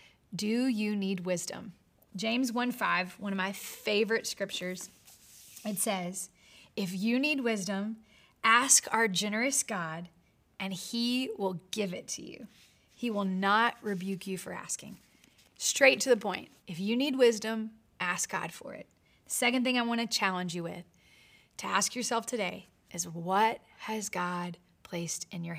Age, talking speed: 30-49, 155 wpm